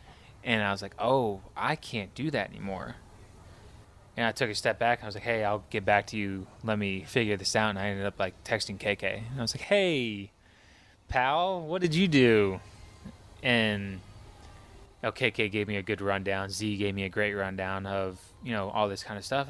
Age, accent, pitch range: 20-39, American, 95-110 Hz